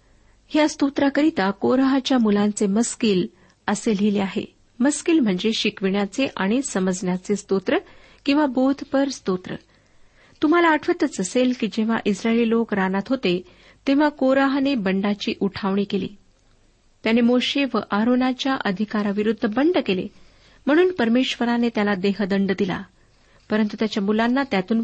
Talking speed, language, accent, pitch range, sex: 110 wpm, Marathi, native, 205-265 Hz, female